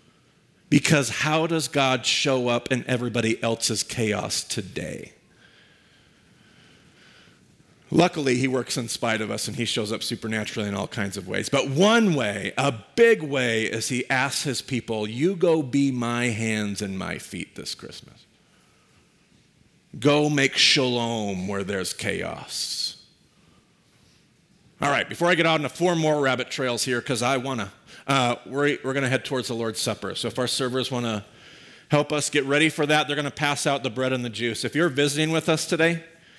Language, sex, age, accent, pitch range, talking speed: English, male, 40-59, American, 120-155 Hz, 180 wpm